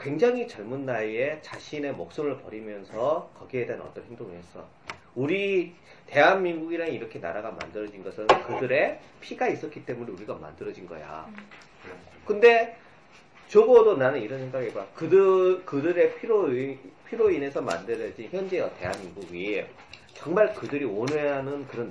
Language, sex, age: Korean, male, 40-59